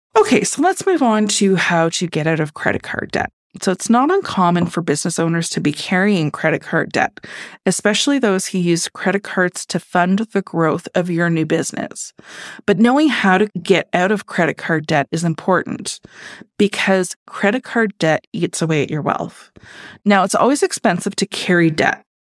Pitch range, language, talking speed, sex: 165-205 Hz, English, 185 wpm, female